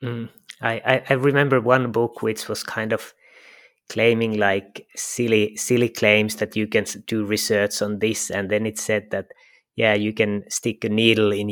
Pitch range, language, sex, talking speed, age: 105-120 Hz, English, male, 175 wpm, 30-49